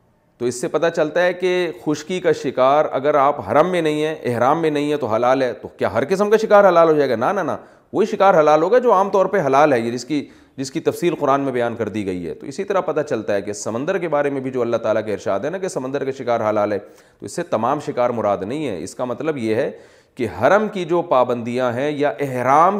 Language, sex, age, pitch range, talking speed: Urdu, male, 40-59, 125-170 Hz, 280 wpm